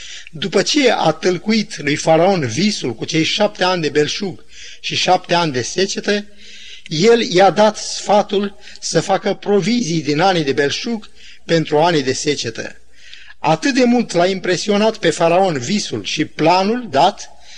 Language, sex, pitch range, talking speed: Romanian, male, 155-205 Hz, 150 wpm